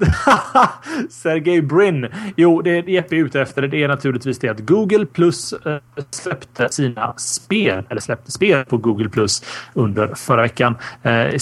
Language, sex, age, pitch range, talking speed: Swedish, male, 30-49, 120-160 Hz, 165 wpm